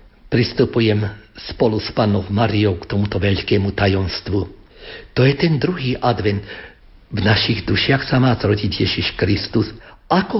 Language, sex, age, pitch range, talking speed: Slovak, male, 60-79, 100-130 Hz, 135 wpm